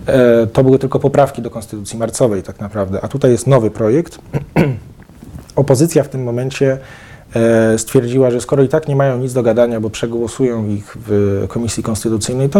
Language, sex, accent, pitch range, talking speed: Polish, male, native, 110-135 Hz, 170 wpm